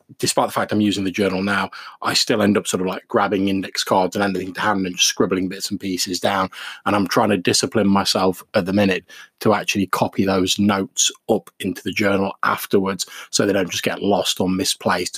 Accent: British